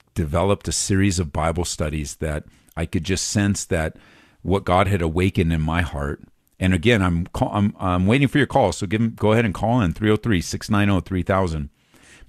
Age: 50-69